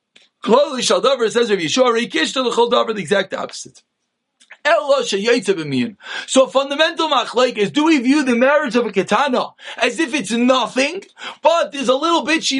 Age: 30-49